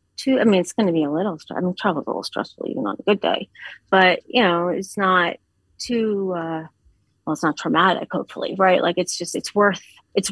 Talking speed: 225 wpm